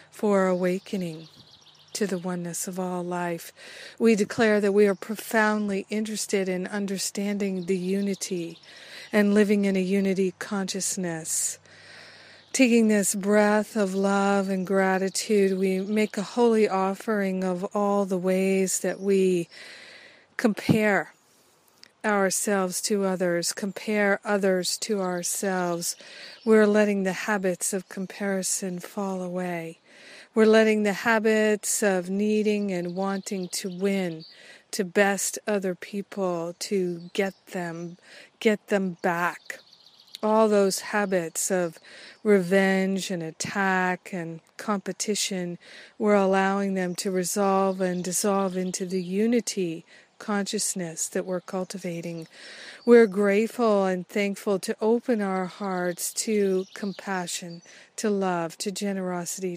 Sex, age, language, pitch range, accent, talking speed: female, 50-69, English, 185-210 Hz, American, 115 wpm